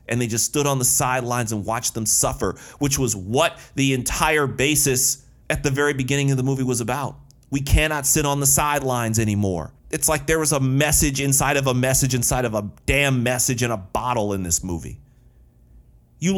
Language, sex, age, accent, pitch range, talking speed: English, male, 40-59, American, 115-150 Hz, 200 wpm